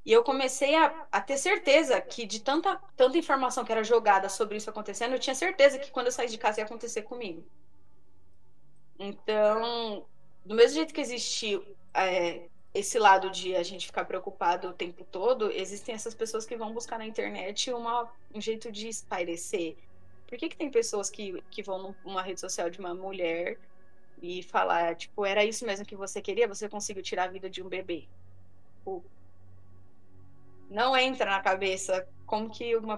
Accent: Brazilian